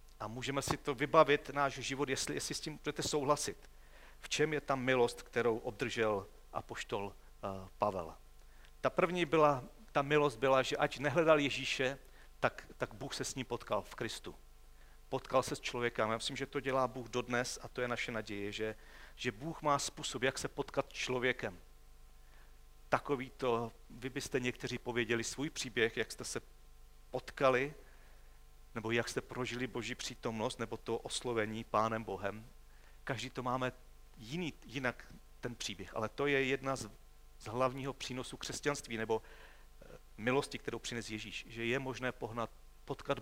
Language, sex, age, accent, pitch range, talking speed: Czech, male, 40-59, native, 120-145 Hz, 160 wpm